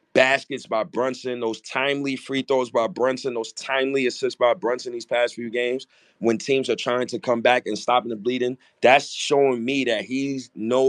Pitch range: 110-130 Hz